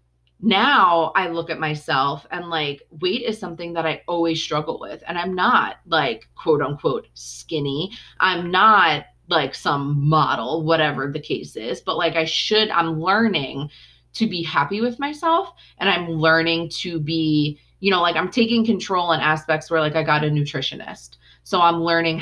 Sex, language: female, English